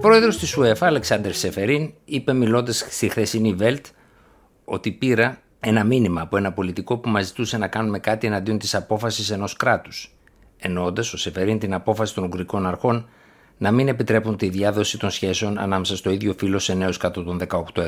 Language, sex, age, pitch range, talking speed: Greek, male, 50-69, 95-120 Hz, 180 wpm